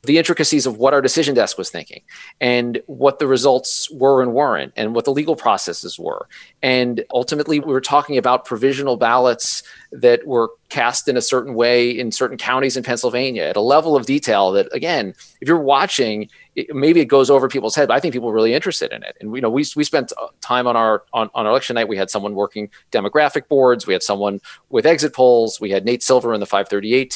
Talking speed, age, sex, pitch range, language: 220 wpm, 40-59, male, 115-145 Hz, English